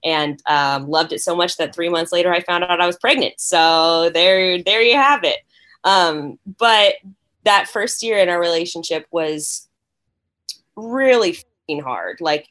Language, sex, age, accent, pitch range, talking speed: English, female, 10-29, American, 145-180 Hz, 170 wpm